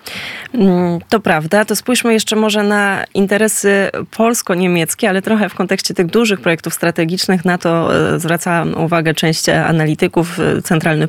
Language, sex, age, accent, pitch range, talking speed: Polish, female, 20-39, native, 165-195 Hz, 130 wpm